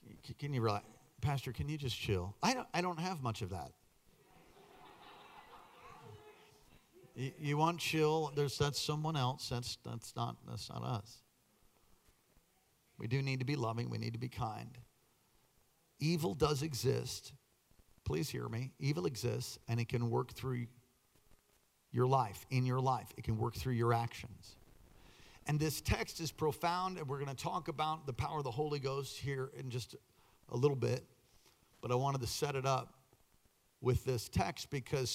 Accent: American